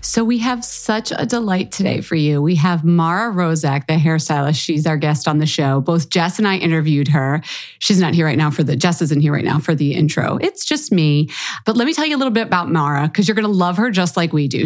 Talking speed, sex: 265 wpm, female